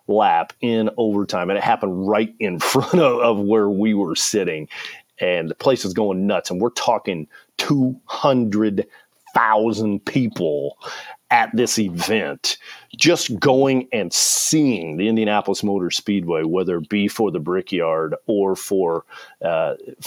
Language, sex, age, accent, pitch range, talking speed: English, male, 40-59, American, 100-125 Hz, 145 wpm